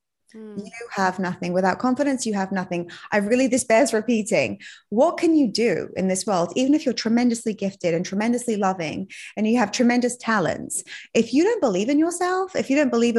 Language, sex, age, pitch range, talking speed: English, female, 20-39, 185-240 Hz, 195 wpm